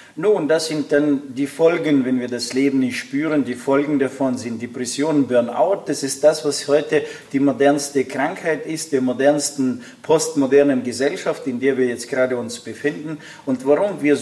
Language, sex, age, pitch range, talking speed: German, male, 40-59, 125-145 Hz, 175 wpm